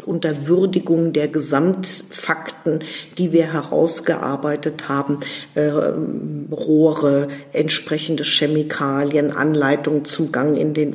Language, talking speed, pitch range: German, 95 wpm, 145-165 Hz